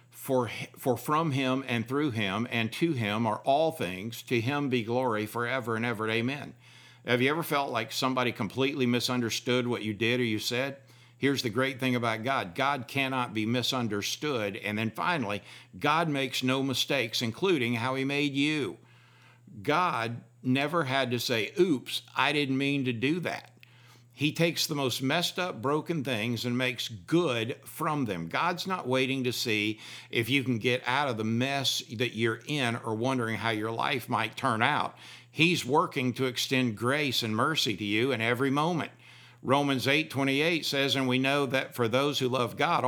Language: English